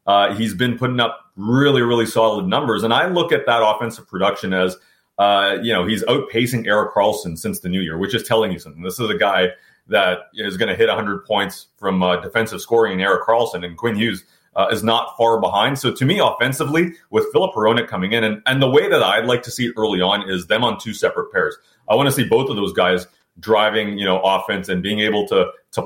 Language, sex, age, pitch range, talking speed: English, male, 30-49, 95-125 Hz, 235 wpm